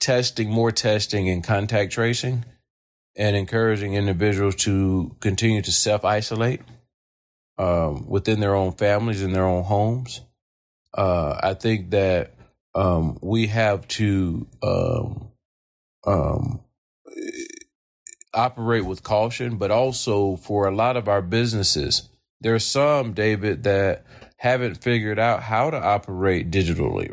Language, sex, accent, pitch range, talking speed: English, male, American, 95-120 Hz, 125 wpm